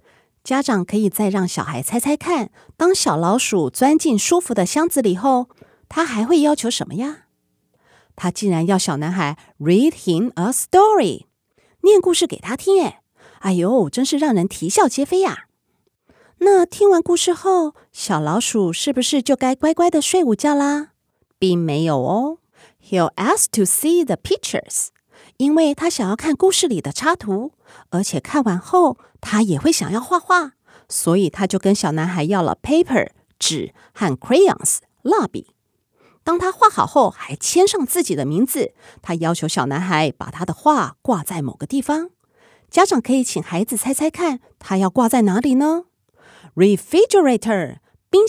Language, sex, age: Chinese, female, 30-49